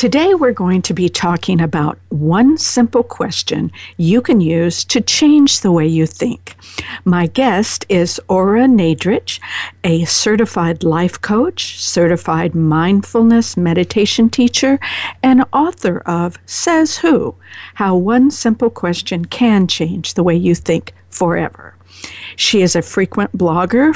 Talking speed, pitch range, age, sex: 135 wpm, 170-240 Hz, 60-79, female